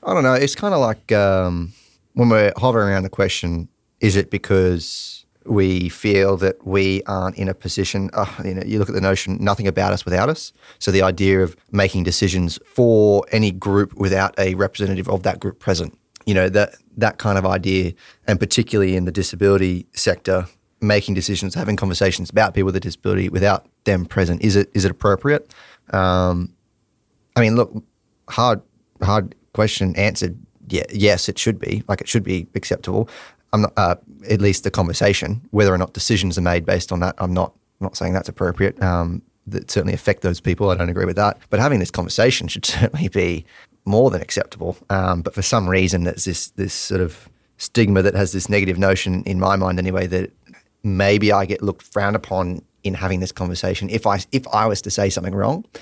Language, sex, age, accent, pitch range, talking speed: English, male, 30-49, Australian, 95-105 Hz, 200 wpm